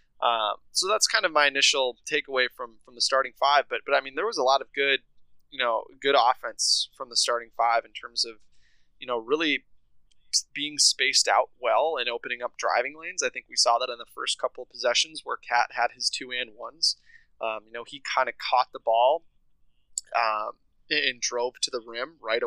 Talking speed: 215 wpm